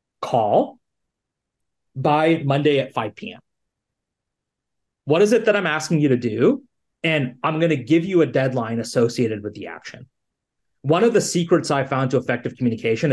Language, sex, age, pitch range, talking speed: English, male, 30-49, 125-170 Hz, 160 wpm